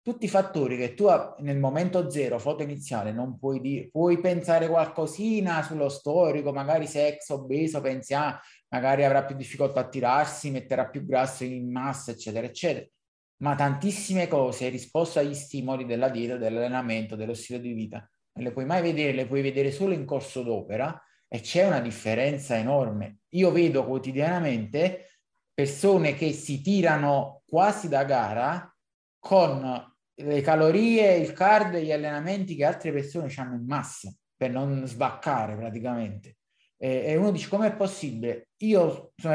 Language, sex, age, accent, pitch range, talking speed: Italian, male, 30-49, native, 130-165 Hz, 160 wpm